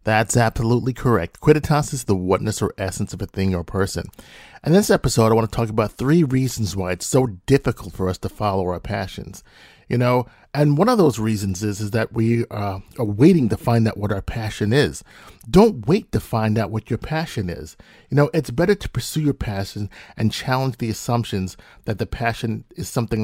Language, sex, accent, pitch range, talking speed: English, male, American, 105-140 Hz, 205 wpm